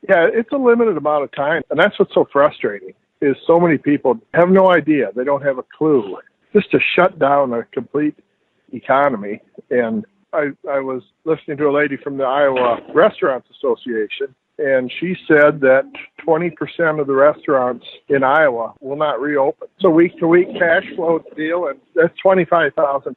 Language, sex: English, male